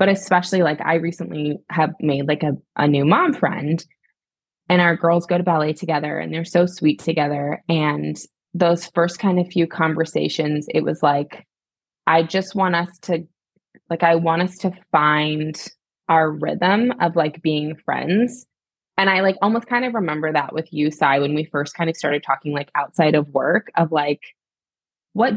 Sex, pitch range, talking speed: female, 150-190 Hz, 180 wpm